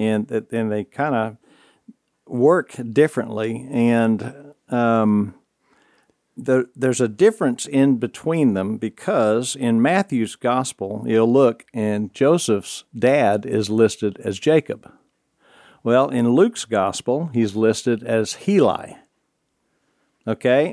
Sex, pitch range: male, 110-125 Hz